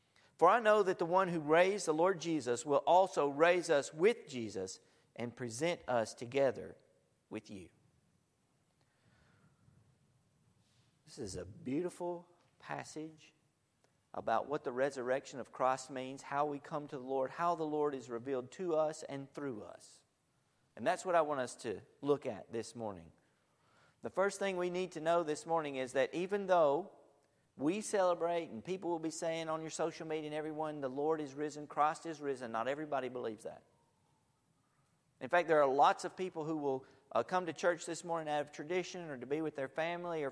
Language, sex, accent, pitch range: English, male, American, 135-170 Hz